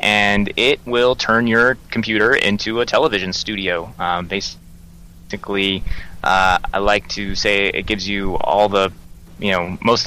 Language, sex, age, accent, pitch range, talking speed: English, male, 20-39, American, 85-110 Hz, 155 wpm